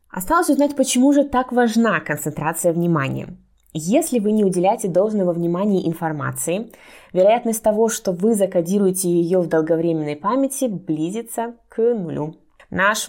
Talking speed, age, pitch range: 130 wpm, 20-39, 160-210 Hz